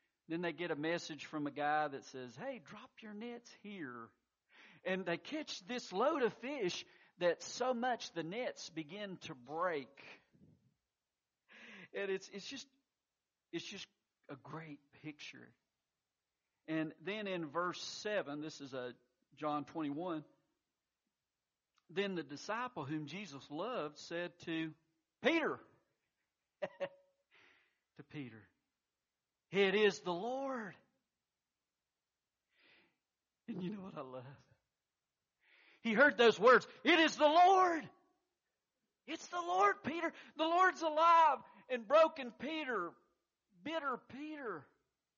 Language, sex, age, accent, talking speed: English, male, 50-69, American, 120 wpm